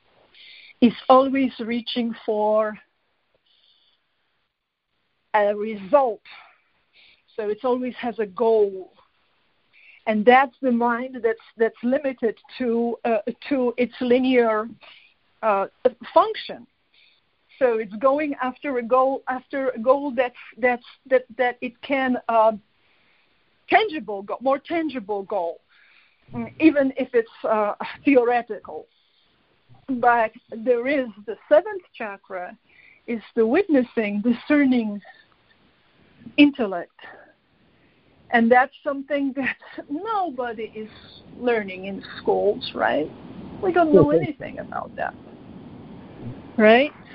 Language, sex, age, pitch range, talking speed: English, female, 50-69, 225-295 Hz, 100 wpm